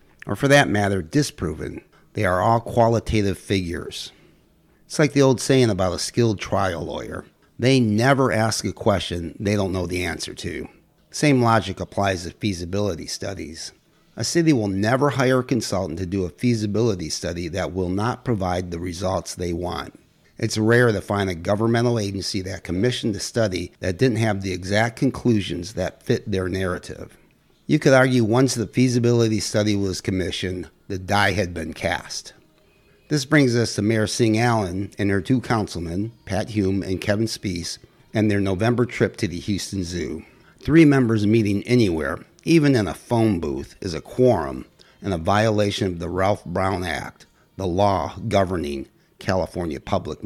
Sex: male